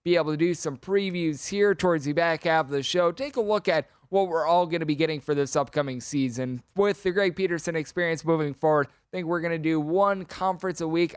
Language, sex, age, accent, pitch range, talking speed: English, male, 20-39, American, 145-175 Hz, 240 wpm